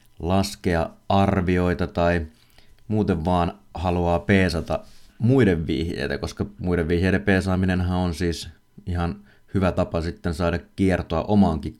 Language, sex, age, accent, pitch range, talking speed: Finnish, male, 30-49, native, 80-100 Hz, 110 wpm